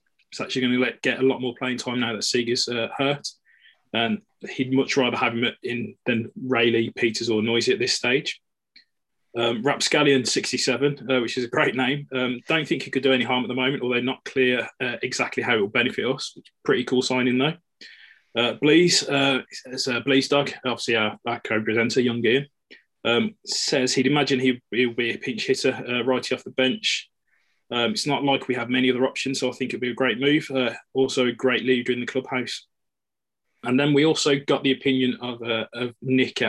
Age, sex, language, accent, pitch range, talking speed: 20-39, male, English, British, 120-135 Hz, 210 wpm